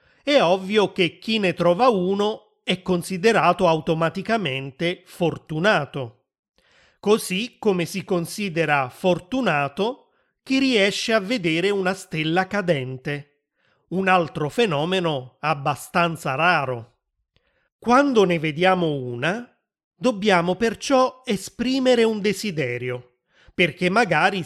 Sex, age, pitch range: male, 30-49, 160-215 Hz